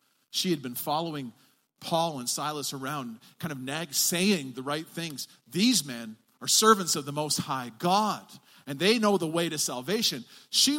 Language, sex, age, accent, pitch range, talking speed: English, male, 40-59, American, 165-215 Hz, 180 wpm